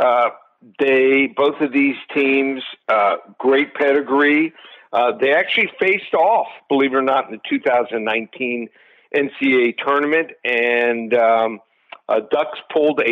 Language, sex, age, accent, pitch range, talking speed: English, male, 60-79, American, 130-155 Hz, 135 wpm